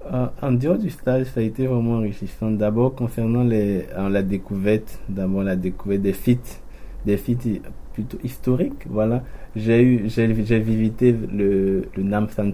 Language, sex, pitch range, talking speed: French, male, 95-115 Hz, 165 wpm